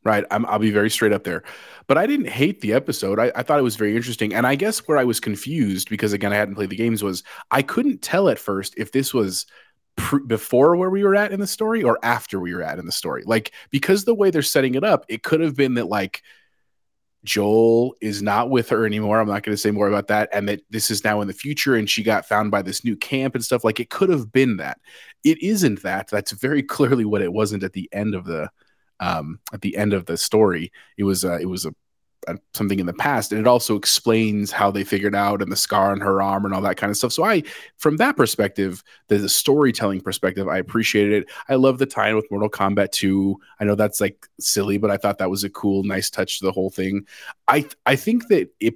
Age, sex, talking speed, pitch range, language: 30-49, male, 255 wpm, 100-125 Hz, English